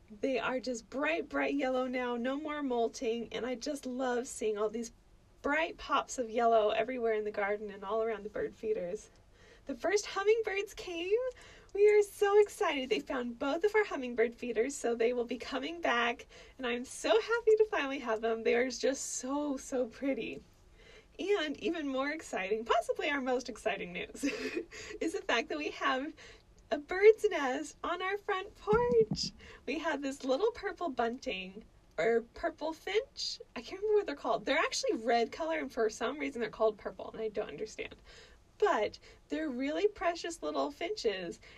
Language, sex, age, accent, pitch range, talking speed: English, female, 20-39, American, 240-355 Hz, 180 wpm